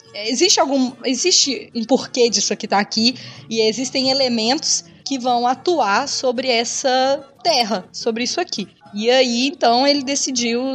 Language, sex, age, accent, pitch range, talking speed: Portuguese, female, 20-39, Brazilian, 195-260 Hz, 145 wpm